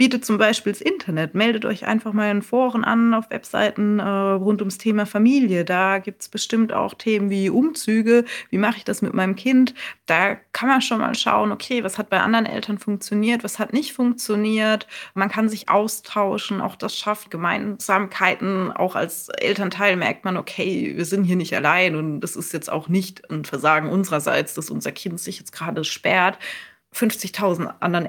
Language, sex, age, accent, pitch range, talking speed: German, female, 20-39, German, 165-215 Hz, 190 wpm